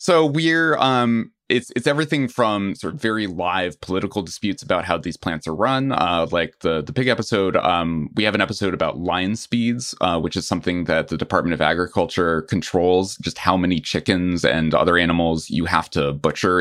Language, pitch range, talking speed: English, 80-105 Hz, 195 wpm